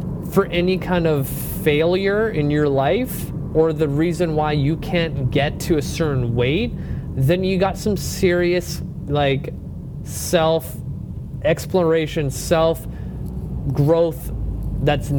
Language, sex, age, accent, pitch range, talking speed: English, male, 30-49, American, 140-175 Hz, 120 wpm